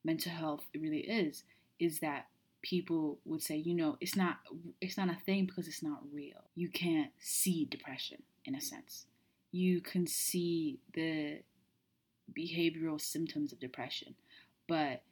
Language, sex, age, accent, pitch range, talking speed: English, female, 20-39, American, 155-195 Hz, 145 wpm